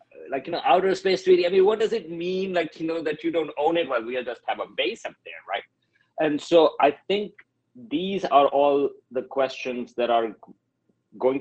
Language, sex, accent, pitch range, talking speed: English, male, Indian, 115-140 Hz, 215 wpm